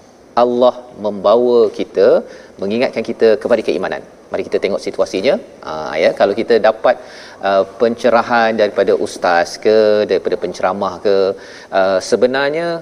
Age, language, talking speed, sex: 40-59, Malayalam, 125 wpm, male